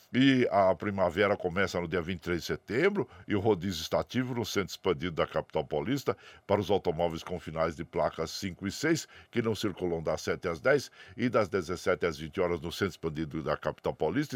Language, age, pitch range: Portuguese, 60-79, 85-115 Hz